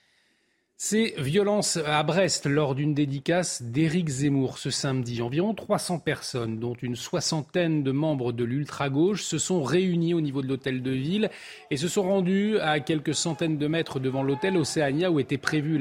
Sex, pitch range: male, 120-160 Hz